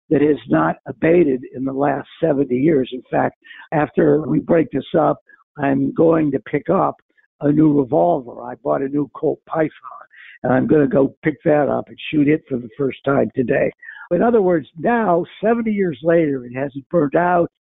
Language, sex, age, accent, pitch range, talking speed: English, male, 60-79, American, 150-210 Hz, 190 wpm